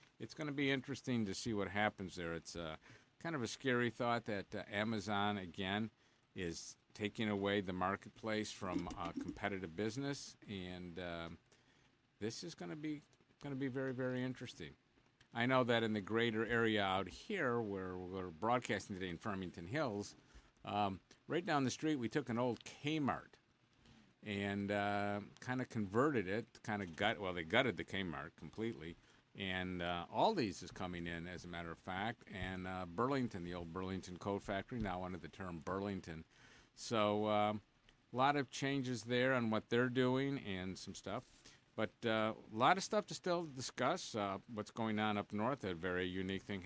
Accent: American